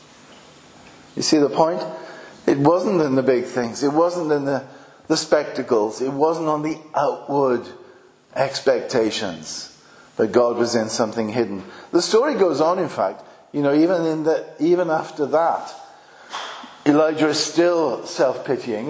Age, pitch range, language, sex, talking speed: 50-69, 120-175 Hz, English, male, 145 wpm